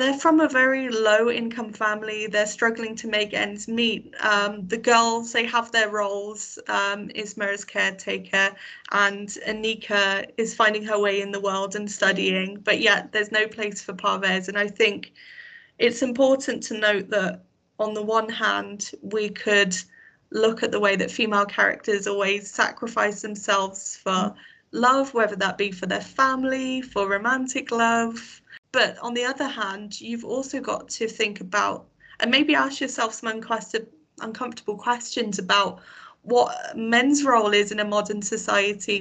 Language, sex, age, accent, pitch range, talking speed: English, female, 20-39, British, 200-230 Hz, 160 wpm